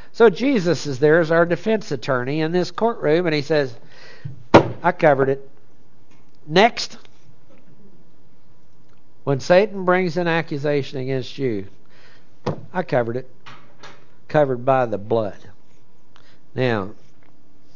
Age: 60-79